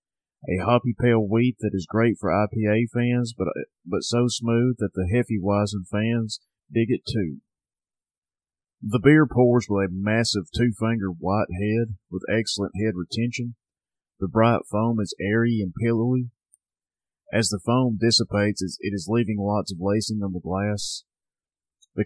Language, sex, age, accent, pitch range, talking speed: English, male, 30-49, American, 100-115 Hz, 155 wpm